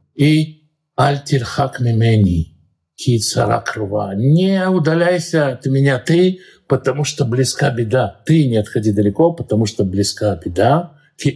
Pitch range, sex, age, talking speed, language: 125-165 Hz, male, 50-69, 105 wpm, Russian